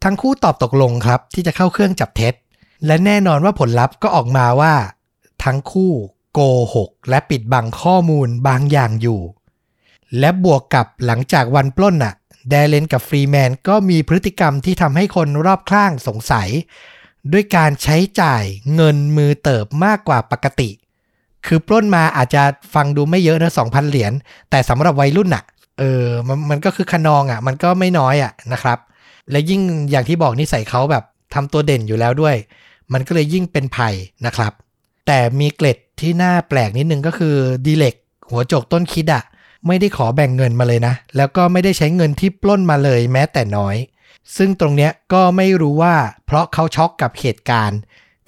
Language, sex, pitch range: Thai, male, 125-165 Hz